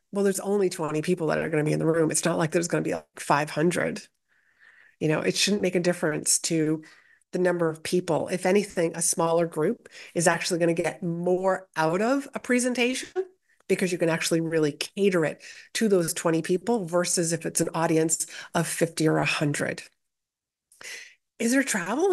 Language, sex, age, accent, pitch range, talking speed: English, female, 30-49, American, 175-235 Hz, 195 wpm